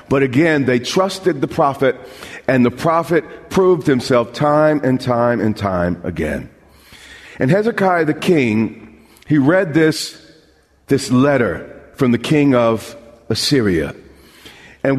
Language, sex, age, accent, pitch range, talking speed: English, male, 40-59, American, 125-170 Hz, 130 wpm